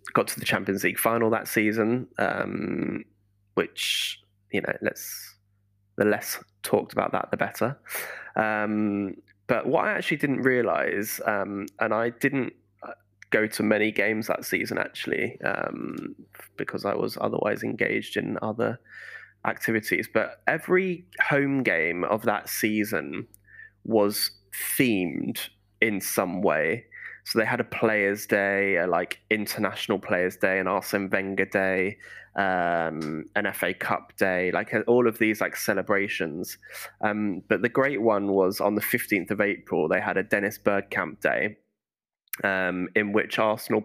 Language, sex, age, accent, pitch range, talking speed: English, male, 20-39, British, 100-110 Hz, 145 wpm